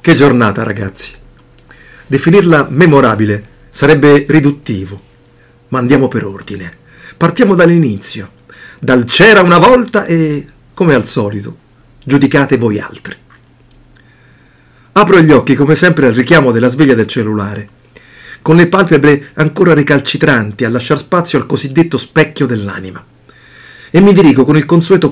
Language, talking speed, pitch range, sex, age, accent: Italian, 125 wpm, 120-155 Hz, male, 50-69, native